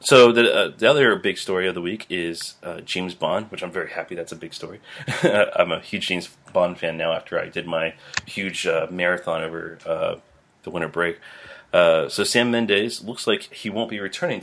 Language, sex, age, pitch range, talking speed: English, male, 30-49, 85-115 Hz, 210 wpm